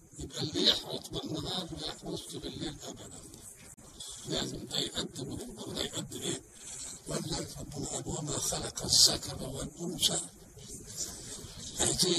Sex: male